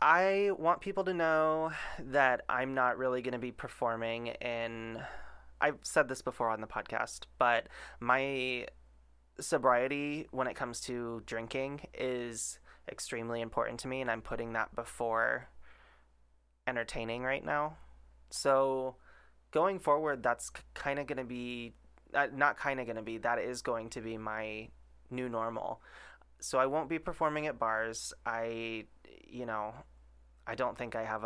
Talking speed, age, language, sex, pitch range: 155 wpm, 20-39, English, male, 115-130 Hz